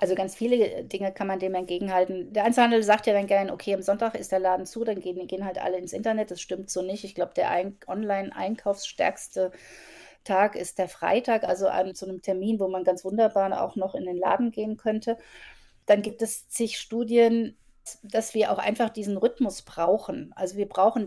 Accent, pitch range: German, 185-215 Hz